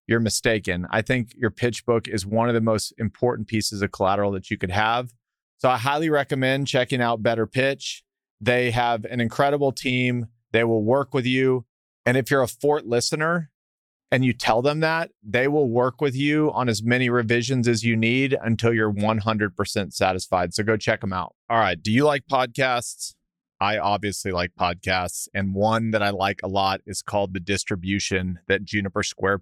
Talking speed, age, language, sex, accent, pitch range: 190 wpm, 30-49, English, male, American, 100-120 Hz